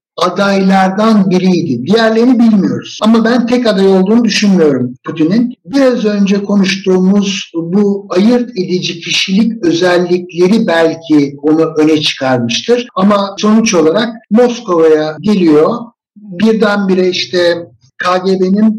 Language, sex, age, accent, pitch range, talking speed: Turkish, male, 60-79, native, 165-230 Hz, 100 wpm